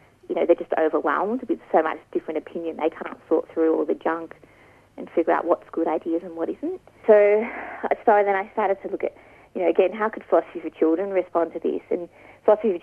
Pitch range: 165-210 Hz